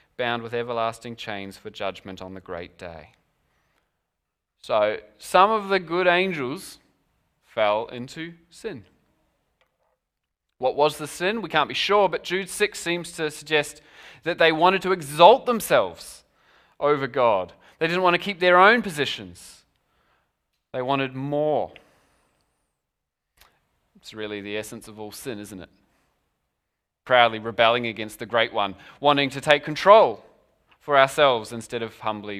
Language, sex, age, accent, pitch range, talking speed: English, male, 20-39, Australian, 110-170 Hz, 140 wpm